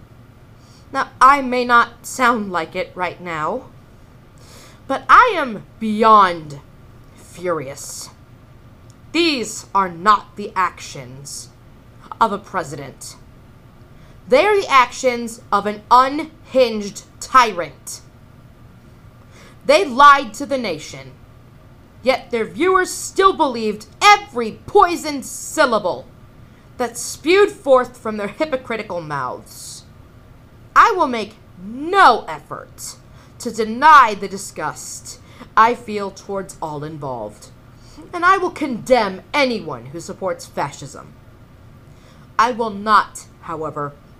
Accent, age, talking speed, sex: American, 30-49, 105 wpm, female